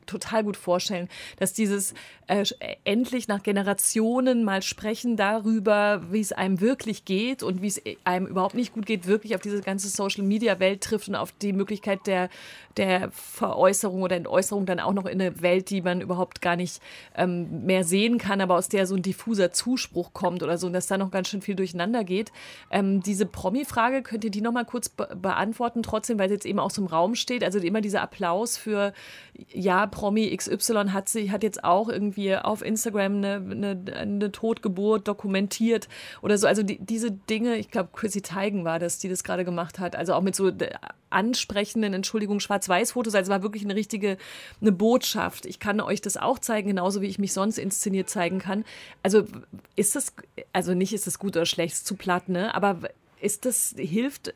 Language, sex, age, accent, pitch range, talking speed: German, female, 30-49, German, 190-220 Hz, 200 wpm